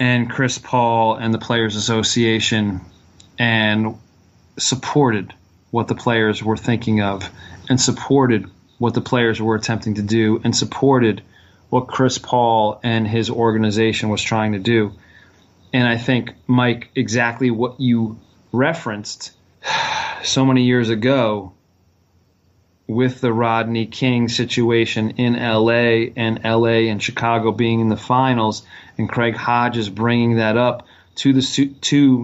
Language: English